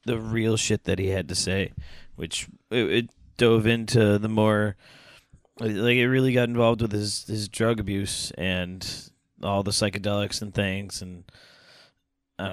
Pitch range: 100-120 Hz